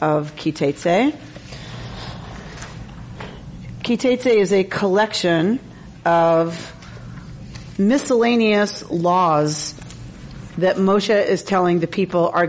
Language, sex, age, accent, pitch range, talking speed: English, female, 40-59, American, 170-225 Hz, 75 wpm